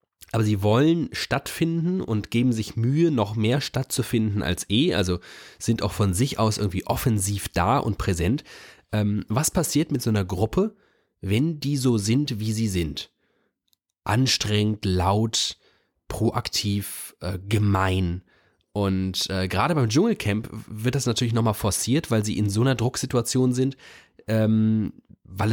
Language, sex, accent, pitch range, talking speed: German, male, German, 100-130 Hz, 145 wpm